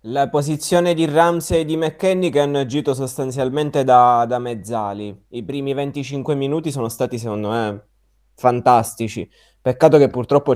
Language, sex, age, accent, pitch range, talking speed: Italian, male, 20-39, native, 115-140 Hz, 150 wpm